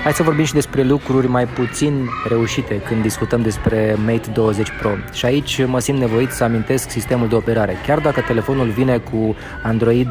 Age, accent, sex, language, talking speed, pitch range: 20-39, native, male, Romanian, 185 wpm, 115-130 Hz